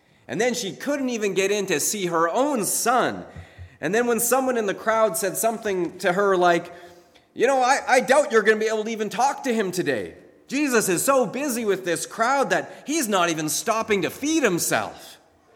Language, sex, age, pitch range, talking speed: English, male, 30-49, 180-255 Hz, 210 wpm